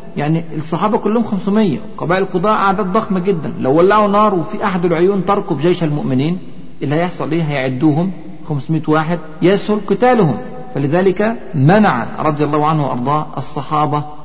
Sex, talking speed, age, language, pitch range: male, 140 wpm, 50-69, Arabic, 145-185 Hz